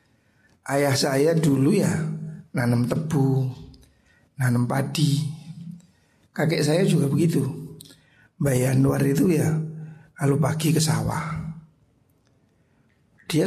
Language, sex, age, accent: Indonesian, male, 60-79, native